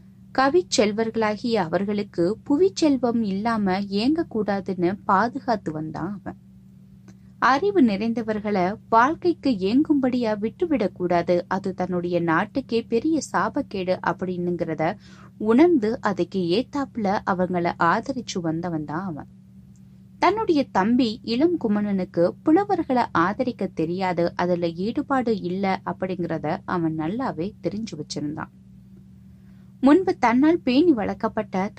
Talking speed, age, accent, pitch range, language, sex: 90 wpm, 20-39, native, 170-245 Hz, Tamil, female